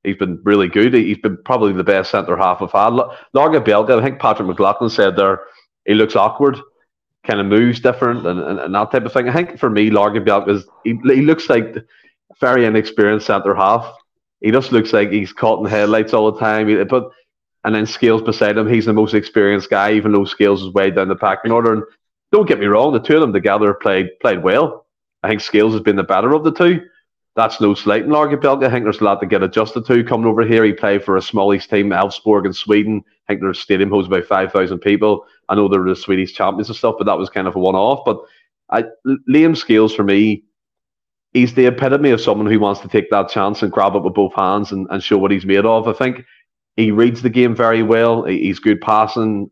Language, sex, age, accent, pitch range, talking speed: English, male, 30-49, Irish, 100-115 Hz, 235 wpm